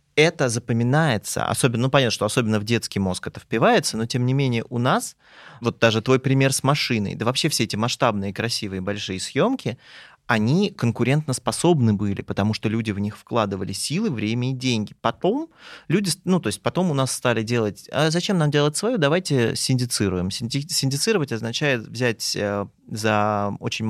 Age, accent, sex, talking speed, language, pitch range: 20-39, native, male, 175 wpm, Russian, 105-150 Hz